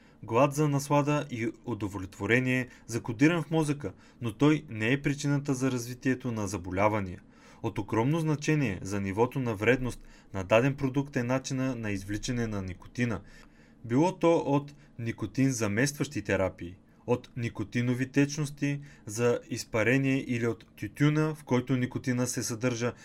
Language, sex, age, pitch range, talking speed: Bulgarian, male, 30-49, 110-140 Hz, 140 wpm